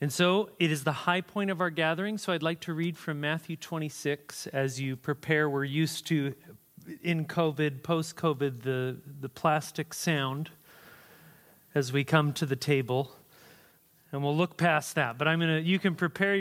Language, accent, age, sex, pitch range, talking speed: English, American, 40-59, male, 145-175 Hz, 175 wpm